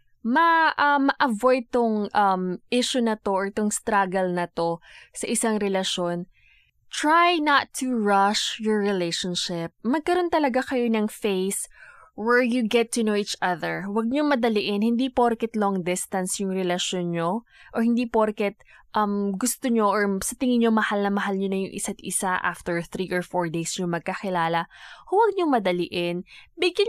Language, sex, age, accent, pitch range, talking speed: English, female, 20-39, Filipino, 190-255 Hz, 165 wpm